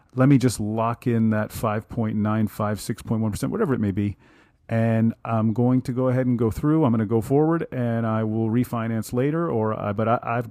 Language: English